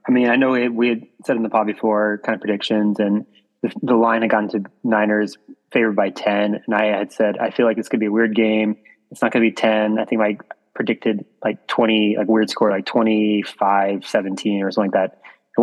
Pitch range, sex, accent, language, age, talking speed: 105-120 Hz, male, American, English, 20-39, 245 wpm